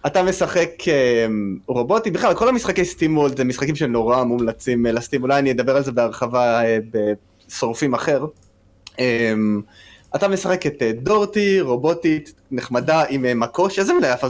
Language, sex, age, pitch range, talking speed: Hebrew, male, 20-39, 120-165 Hz, 130 wpm